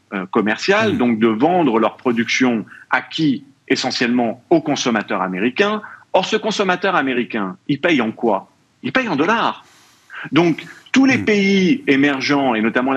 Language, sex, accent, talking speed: French, male, French, 140 wpm